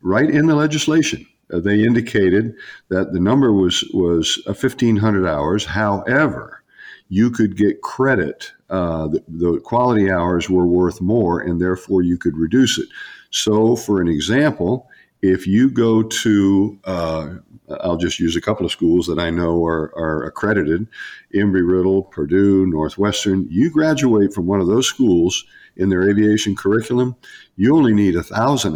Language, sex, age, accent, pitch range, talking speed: English, male, 50-69, American, 85-110 Hz, 155 wpm